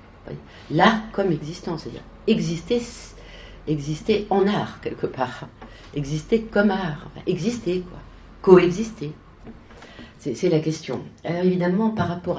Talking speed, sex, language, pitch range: 110 wpm, female, French, 145-205 Hz